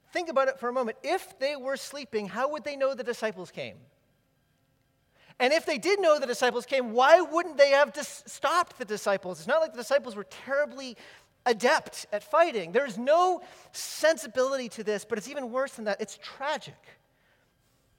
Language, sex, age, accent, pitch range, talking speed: English, male, 40-59, American, 180-255 Hz, 185 wpm